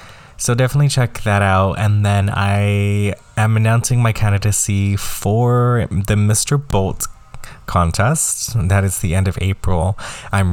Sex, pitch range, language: male, 95-110 Hz, English